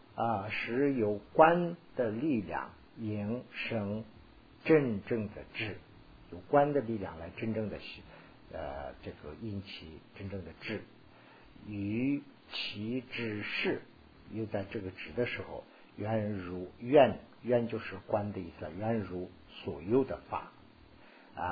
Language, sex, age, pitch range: Chinese, male, 50-69, 95-130 Hz